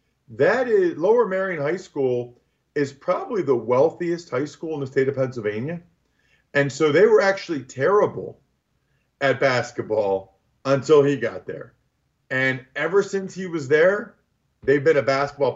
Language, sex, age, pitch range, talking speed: English, male, 40-59, 125-150 Hz, 150 wpm